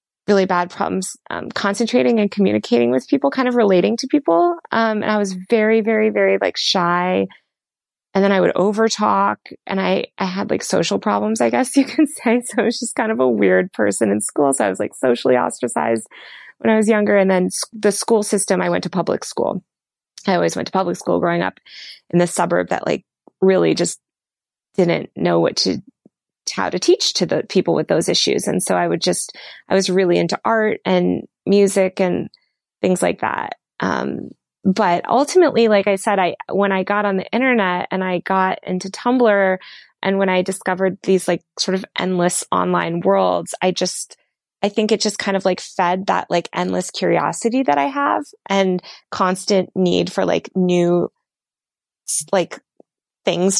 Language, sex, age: English, female, 20-39